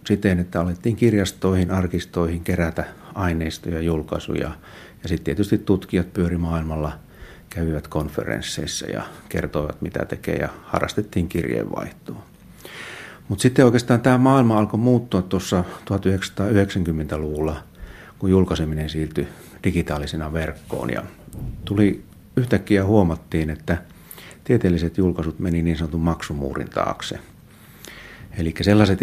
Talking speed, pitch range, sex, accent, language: 110 wpm, 85-100 Hz, male, native, Finnish